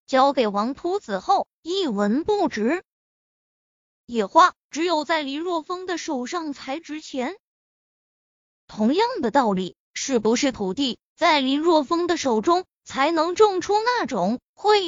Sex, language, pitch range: female, Chinese, 255-360 Hz